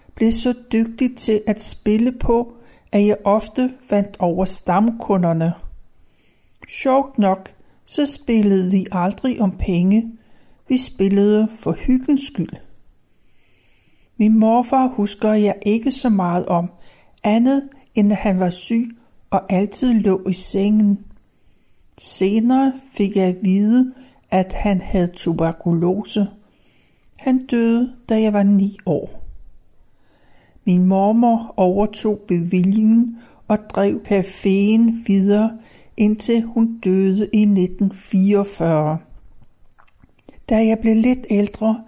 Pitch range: 190-235 Hz